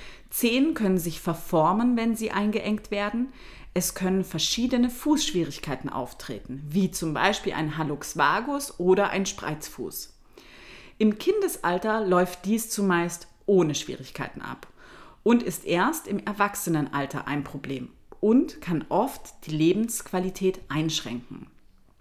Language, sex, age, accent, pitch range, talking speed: German, female, 30-49, German, 170-235 Hz, 115 wpm